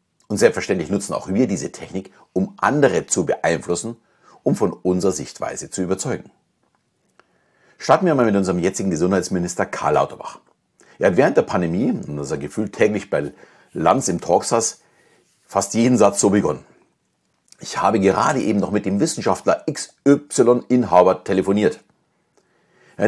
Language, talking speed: German, 145 wpm